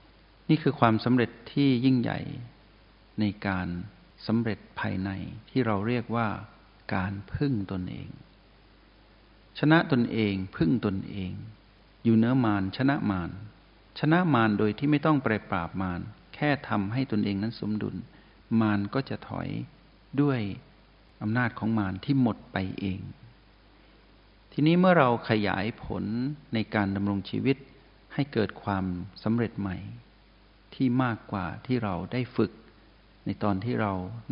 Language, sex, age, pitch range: Thai, male, 60-79, 100-125 Hz